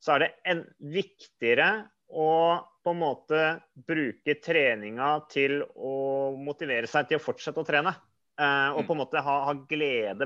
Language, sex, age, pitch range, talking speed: English, male, 30-49, 135-160 Hz, 165 wpm